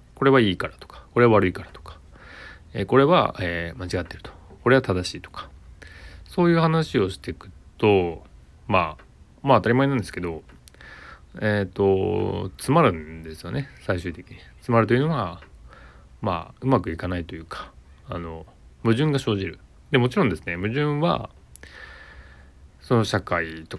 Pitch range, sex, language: 85-120 Hz, male, Japanese